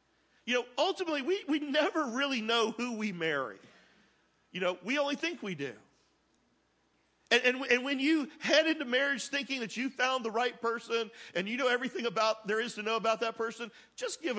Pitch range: 230-300 Hz